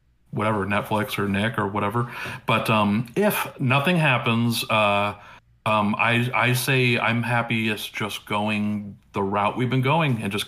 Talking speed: 160 wpm